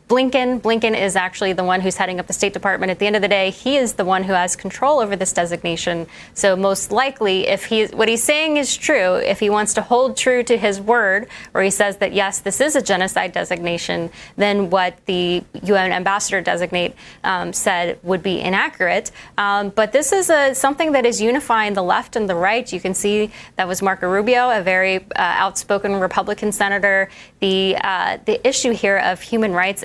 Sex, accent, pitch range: female, American, 195-240 Hz